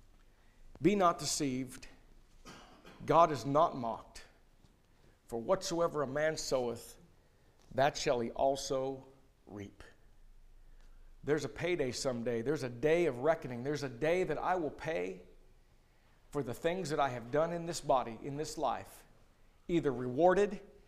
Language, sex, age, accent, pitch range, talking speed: English, male, 50-69, American, 125-170 Hz, 140 wpm